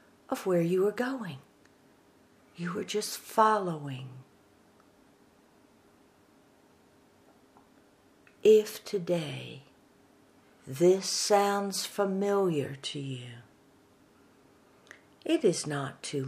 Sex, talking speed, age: female, 75 wpm, 60-79